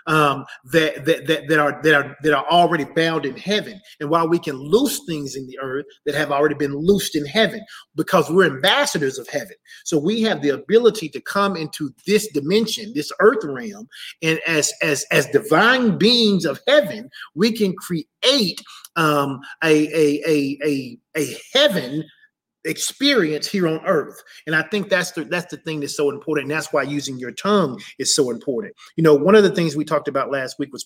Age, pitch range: 30-49, 145-200 Hz